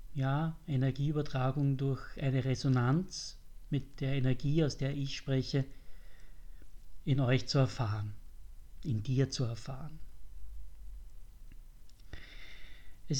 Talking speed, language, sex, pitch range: 95 wpm, German, male, 120-145 Hz